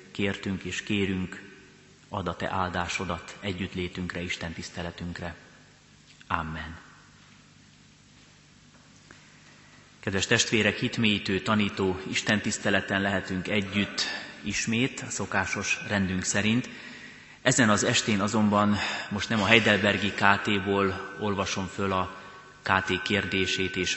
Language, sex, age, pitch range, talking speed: Hungarian, male, 30-49, 90-105 Hz, 100 wpm